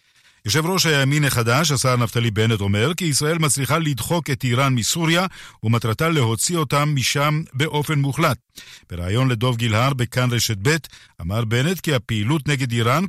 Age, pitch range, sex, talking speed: 50-69, 120-150 Hz, male, 150 wpm